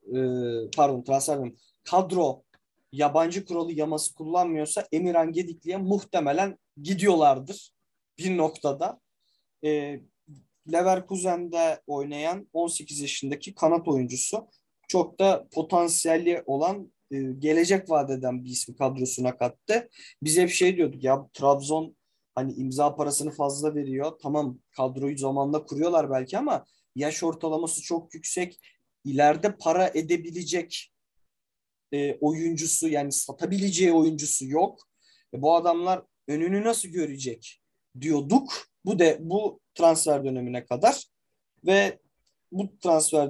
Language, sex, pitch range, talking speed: Turkish, male, 140-180 Hz, 105 wpm